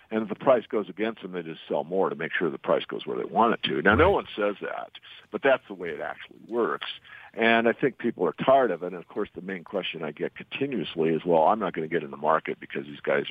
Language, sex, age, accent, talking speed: English, male, 50-69, American, 290 wpm